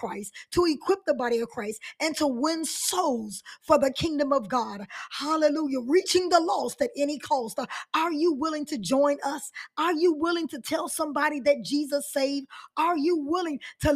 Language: English